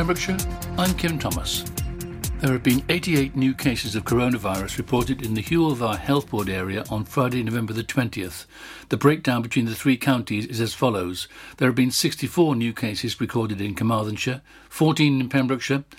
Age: 60-79